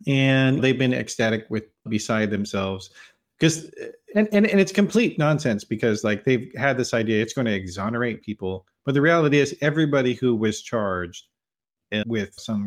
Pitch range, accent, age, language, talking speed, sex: 95-130 Hz, American, 40-59, English, 165 wpm, male